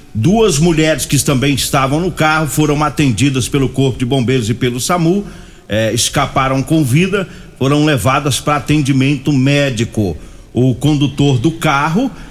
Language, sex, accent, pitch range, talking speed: Portuguese, male, Brazilian, 125-150 Hz, 140 wpm